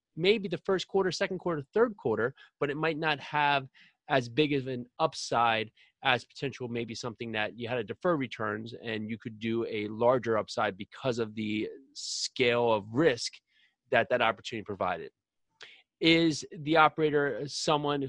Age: 30-49